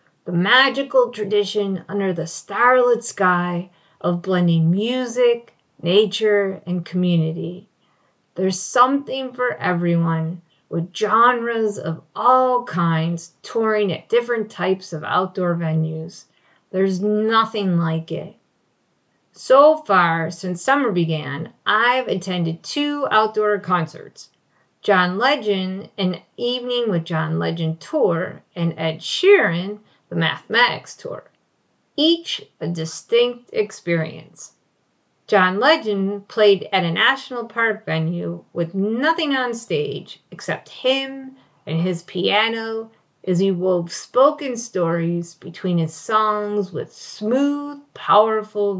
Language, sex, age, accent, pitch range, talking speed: English, female, 40-59, American, 170-240 Hz, 110 wpm